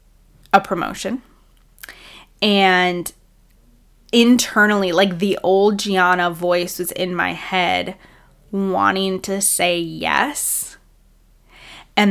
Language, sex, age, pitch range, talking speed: English, female, 10-29, 185-210 Hz, 90 wpm